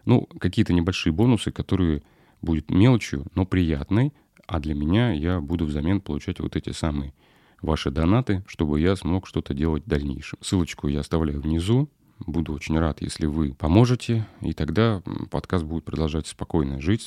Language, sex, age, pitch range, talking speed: Russian, male, 30-49, 75-100 Hz, 160 wpm